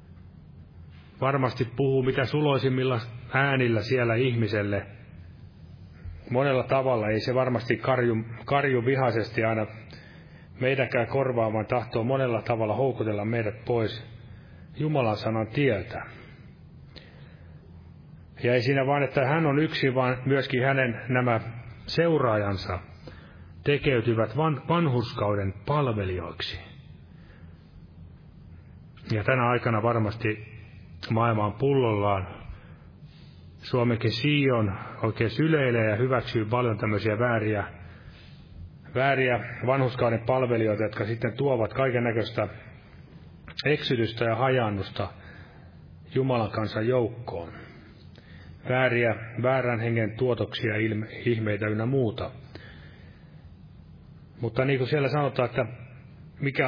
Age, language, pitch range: 30-49, Finnish, 105-130 Hz